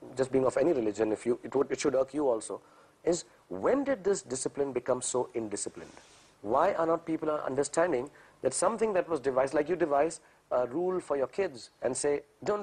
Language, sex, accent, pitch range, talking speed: English, male, Indian, 125-170 Hz, 205 wpm